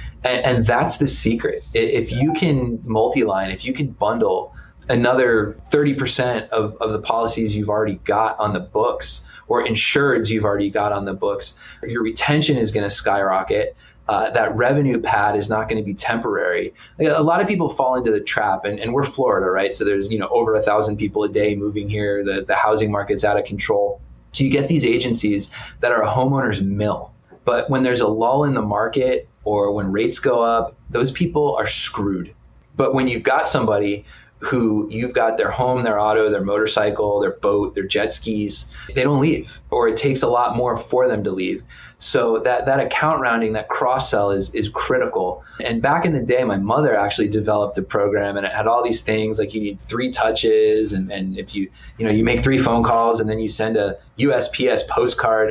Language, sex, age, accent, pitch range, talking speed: English, male, 20-39, American, 105-135 Hz, 205 wpm